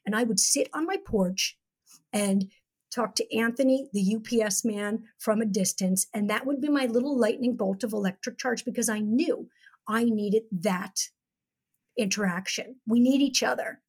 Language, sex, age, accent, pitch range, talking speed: English, female, 50-69, American, 220-280 Hz, 170 wpm